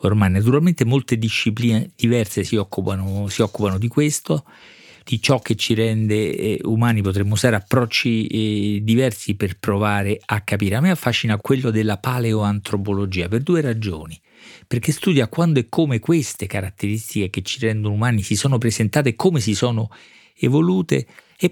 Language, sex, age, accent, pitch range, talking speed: Italian, male, 40-59, native, 105-130 Hz, 150 wpm